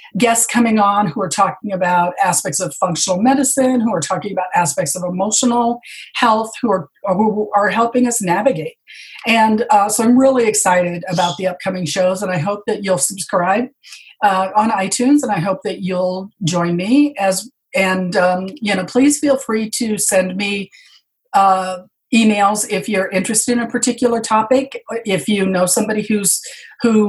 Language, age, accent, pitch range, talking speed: English, 40-59, American, 185-225 Hz, 175 wpm